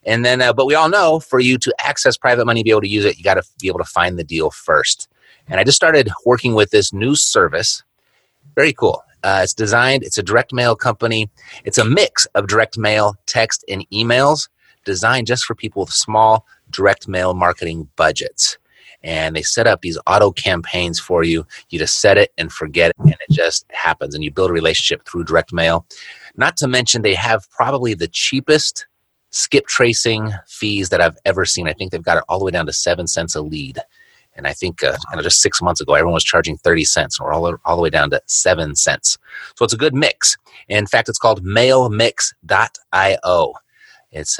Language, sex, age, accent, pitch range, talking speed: English, male, 30-49, American, 90-125 Hz, 210 wpm